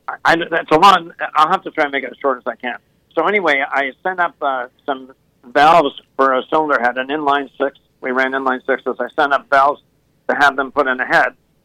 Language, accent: English, American